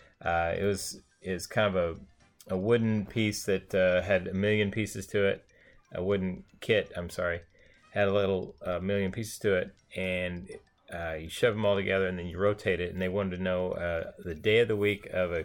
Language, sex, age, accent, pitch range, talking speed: English, male, 30-49, American, 90-105 Hz, 220 wpm